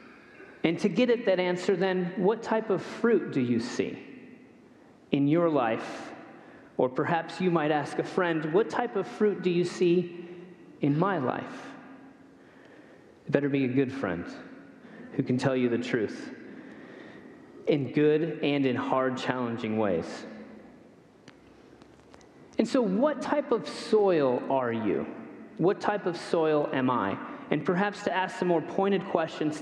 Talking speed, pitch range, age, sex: 150 wpm, 150-200 Hz, 30-49, male